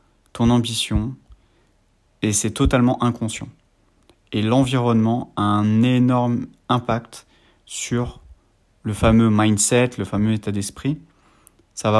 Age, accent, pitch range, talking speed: 30-49, French, 100-120 Hz, 110 wpm